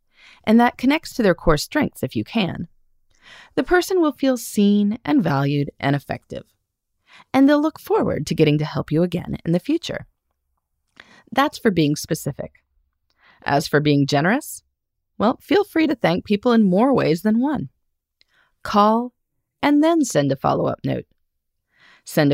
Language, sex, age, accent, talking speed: English, female, 30-49, American, 160 wpm